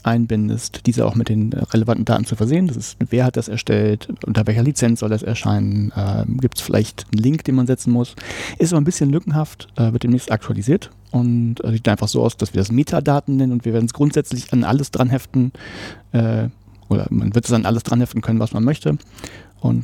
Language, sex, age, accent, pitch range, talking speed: German, male, 40-59, German, 110-130 Hz, 220 wpm